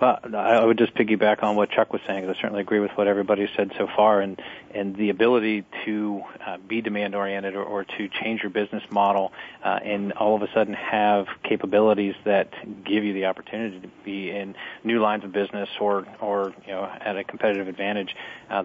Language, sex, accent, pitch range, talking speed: English, male, American, 95-105 Hz, 210 wpm